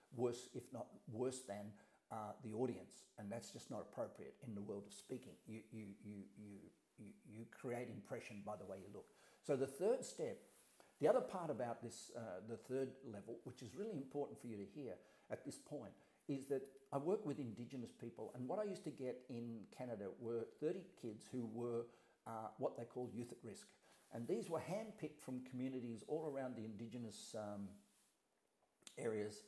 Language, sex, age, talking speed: English, male, 50-69, 190 wpm